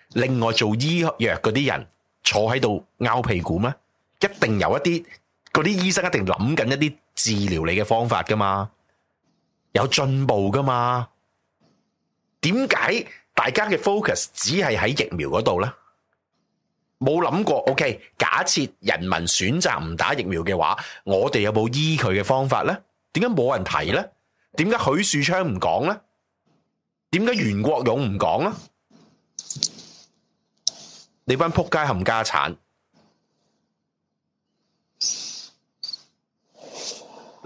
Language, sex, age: Chinese, male, 30-49